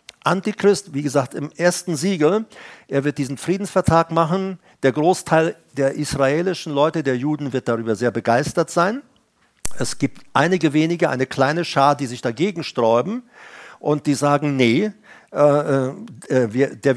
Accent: German